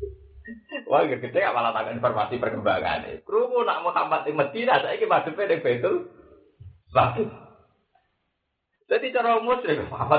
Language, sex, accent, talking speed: Indonesian, male, native, 100 wpm